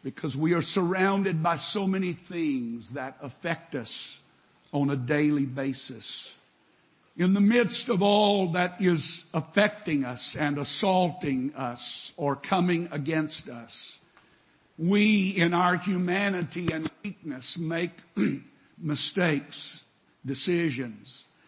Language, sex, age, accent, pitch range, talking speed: English, male, 60-79, American, 145-195 Hz, 110 wpm